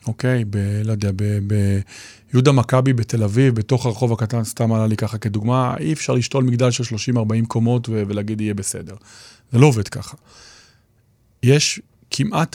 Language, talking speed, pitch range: Hebrew, 170 wpm, 110-130 Hz